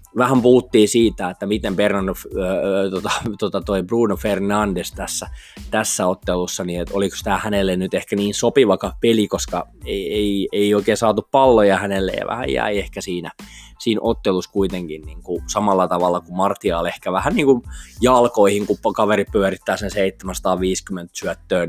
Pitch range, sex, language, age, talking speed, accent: 90-105 Hz, male, Finnish, 20-39, 140 wpm, native